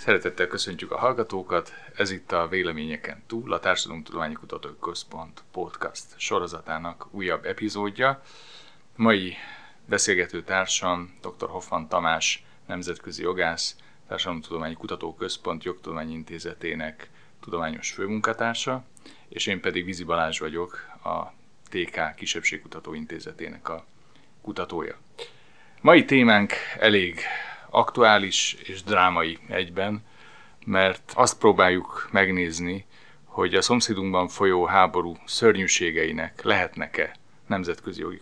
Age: 30-49